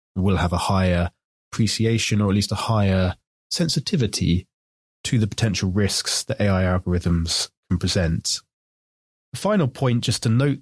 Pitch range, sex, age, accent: 95-115 Hz, male, 20-39, British